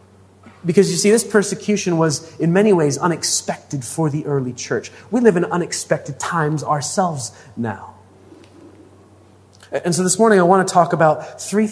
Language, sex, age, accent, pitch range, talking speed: English, male, 30-49, American, 135-180 Hz, 160 wpm